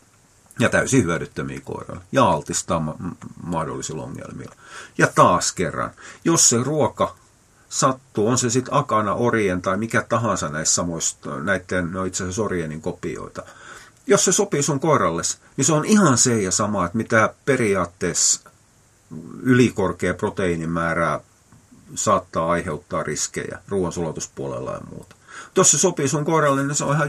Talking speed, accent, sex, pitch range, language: 135 wpm, native, male, 90-135 Hz, Finnish